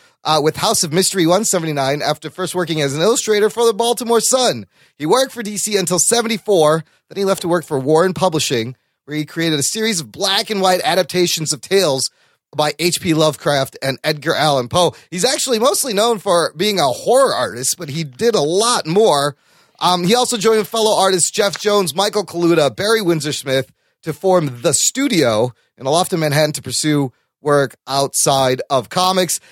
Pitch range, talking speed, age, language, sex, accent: 150-210 Hz, 185 wpm, 30-49, English, male, American